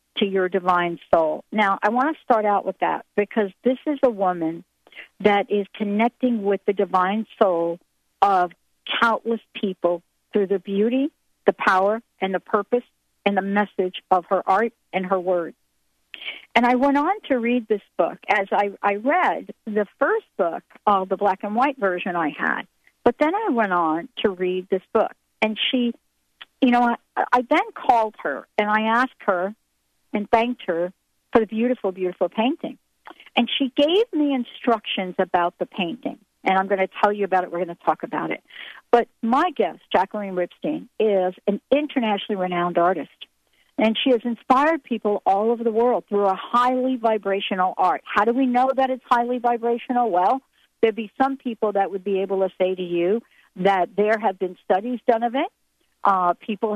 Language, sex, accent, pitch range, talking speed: English, female, American, 190-245 Hz, 185 wpm